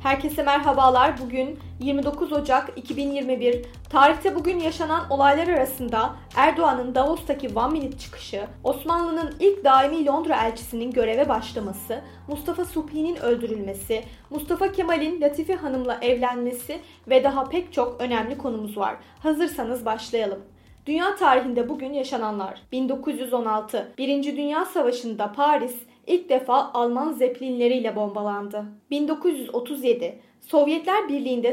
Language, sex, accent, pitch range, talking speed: Turkish, female, native, 240-300 Hz, 110 wpm